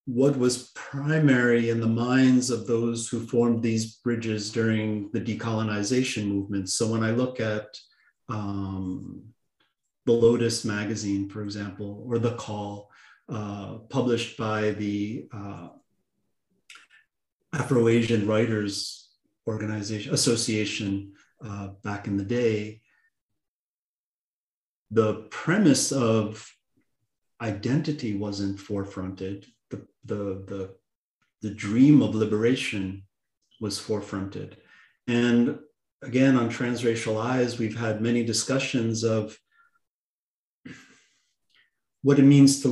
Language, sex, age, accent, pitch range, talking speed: English, male, 40-59, American, 105-120 Hz, 100 wpm